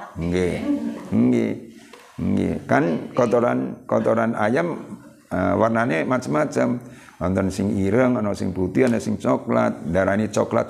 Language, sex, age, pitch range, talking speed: Indonesian, male, 50-69, 100-140 Hz, 125 wpm